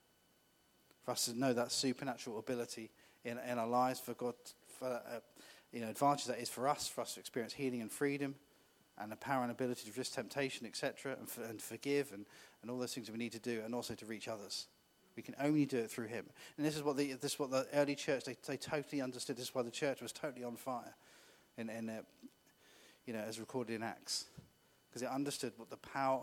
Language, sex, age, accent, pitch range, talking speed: English, male, 30-49, British, 115-135 Hz, 235 wpm